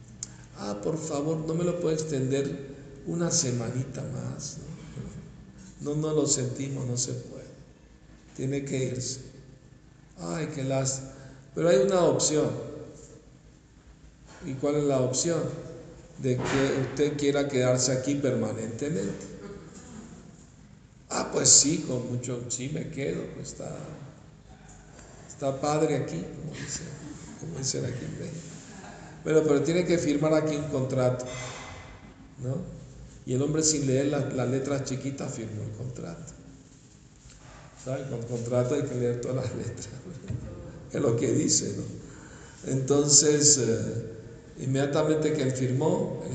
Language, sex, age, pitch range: Spanish, male, 50-69, 125-150 Hz